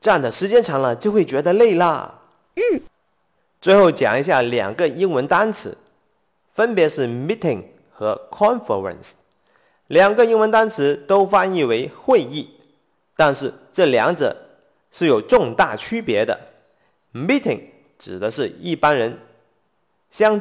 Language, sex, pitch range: Chinese, male, 185-245 Hz